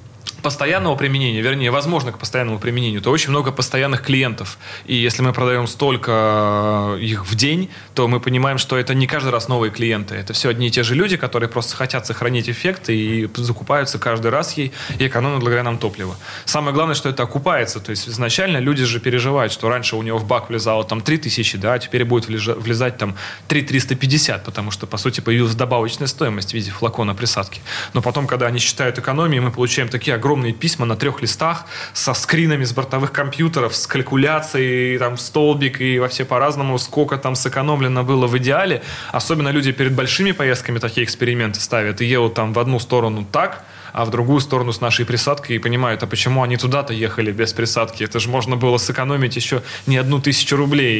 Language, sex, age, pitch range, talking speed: Russian, male, 20-39, 115-140 Hz, 195 wpm